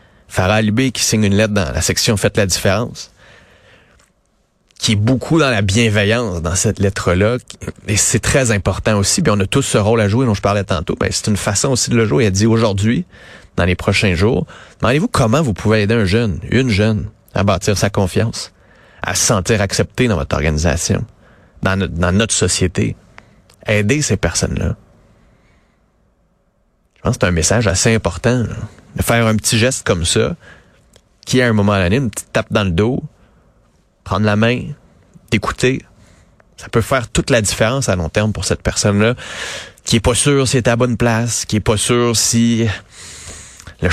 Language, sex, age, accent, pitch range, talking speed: French, male, 30-49, Canadian, 95-115 Hz, 190 wpm